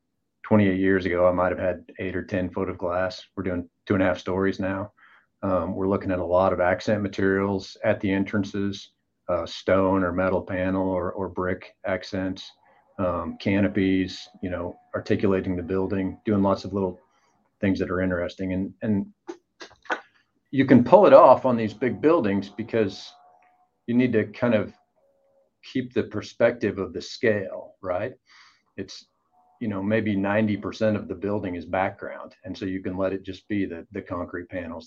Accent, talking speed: American, 175 wpm